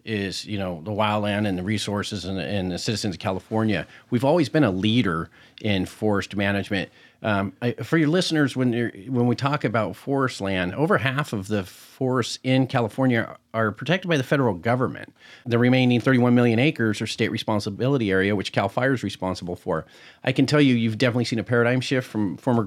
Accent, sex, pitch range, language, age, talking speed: American, male, 105-130 Hz, English, 40-59, 200 wpm